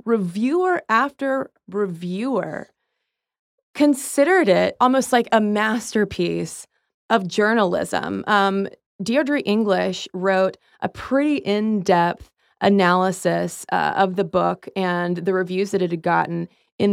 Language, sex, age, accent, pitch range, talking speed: English, female, 20-39, American, 180-235 Hz, 110 wpm